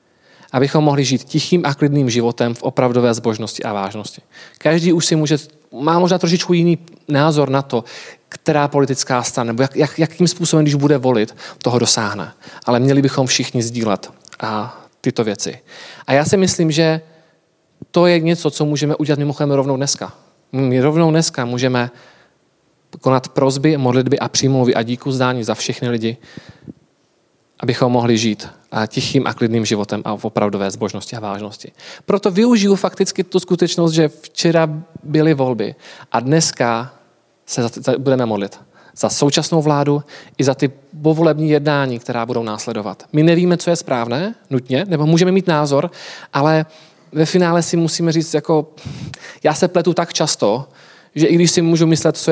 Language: Czech